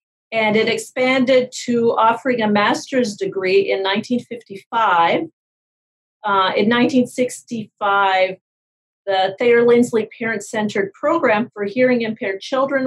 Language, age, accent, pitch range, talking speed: English, 50-69, American, 195-245 Hz, 100 wpm